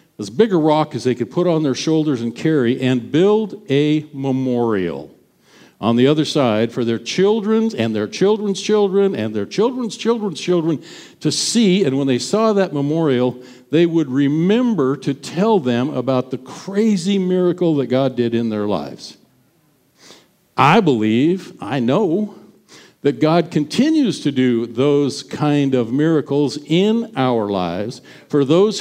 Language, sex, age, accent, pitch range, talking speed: English, male, 60-79, American, 130-185 Hz, 155 wpm